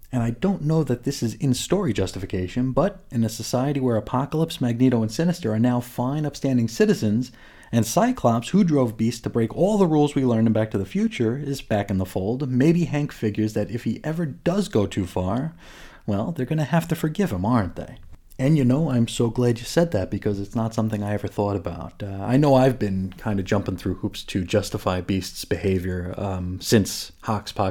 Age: 30-49